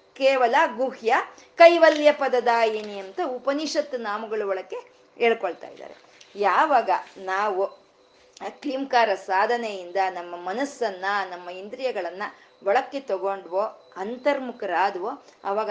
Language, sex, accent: Kannada, female, native